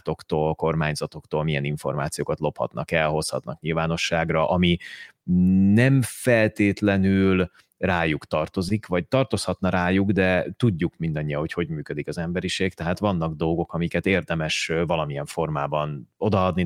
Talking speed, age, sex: 110 wpm, 30-49, male